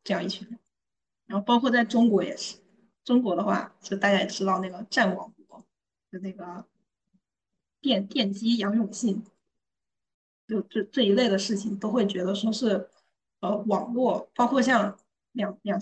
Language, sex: Chinese, female